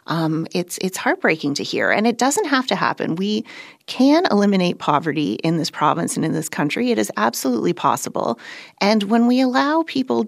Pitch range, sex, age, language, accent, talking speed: 160-210 Hz, female, 30-49, English, American, 185 wpm